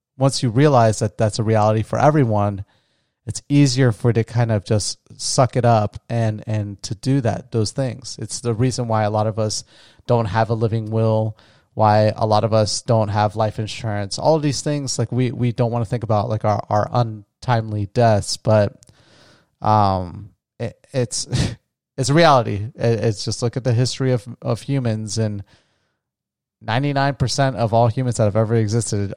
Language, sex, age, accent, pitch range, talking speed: English, male, 30-49, American, 105-120 Hz, 185 wpm